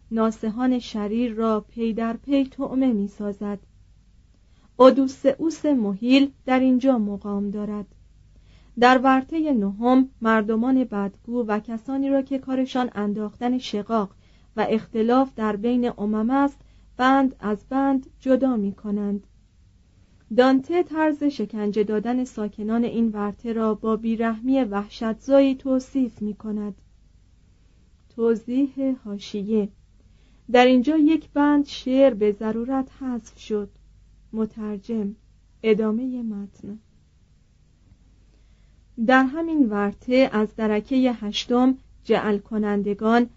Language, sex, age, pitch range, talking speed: Persian, female, 40-59, 205-260 Hz, 100 wpm